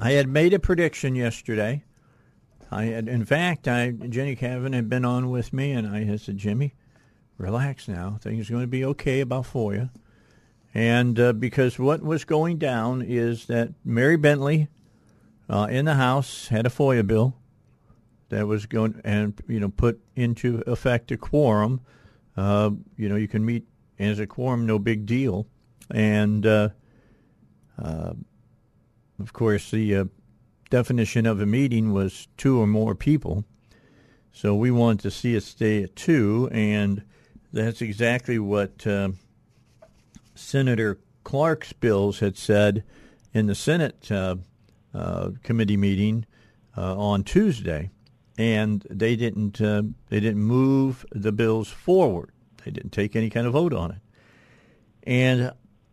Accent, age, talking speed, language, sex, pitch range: American, 50-69, 150 wpm, English, male, 105-125 Hz